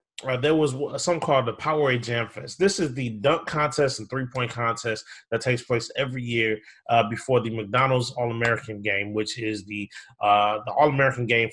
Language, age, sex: English, 30-49, male